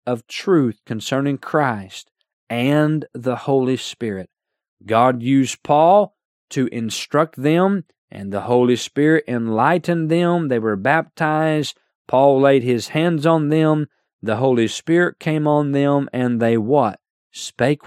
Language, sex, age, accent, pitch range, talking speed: English, male, 40-59, American, 110-150 Hz, 130 wpm